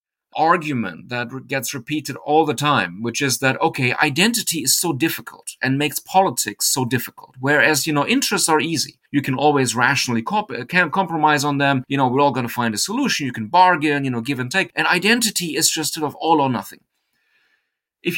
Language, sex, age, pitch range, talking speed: English, male, 30-49, 130-170 Hz, 205 wpm